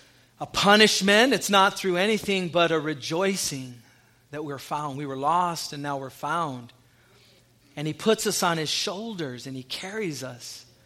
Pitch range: 130-175 Hz